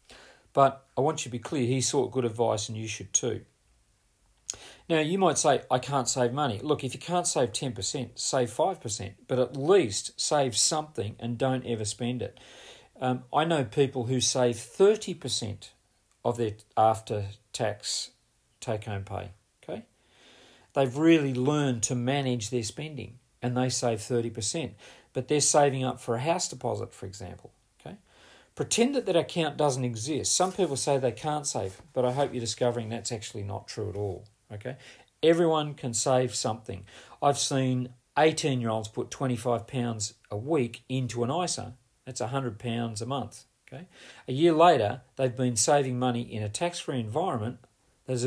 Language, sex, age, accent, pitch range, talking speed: English, male, 40-59, Australian, 115-140 Hz, 160 wpm